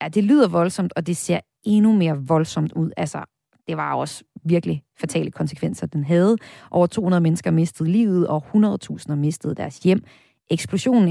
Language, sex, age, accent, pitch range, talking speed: Danish, female, 30-49, native, 160-215 Hz, 165 wpm